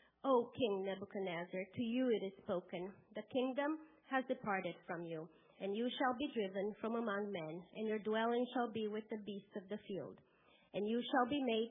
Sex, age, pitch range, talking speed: female, 30-49, 195-235 Hz, 195 wpm